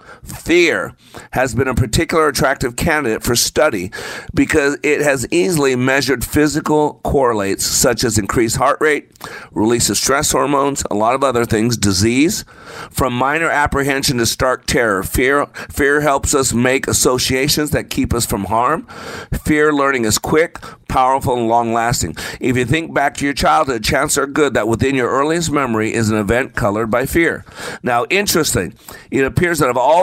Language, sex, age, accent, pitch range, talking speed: English, male, 50-69, American, 110-145 Hz, 165 wpm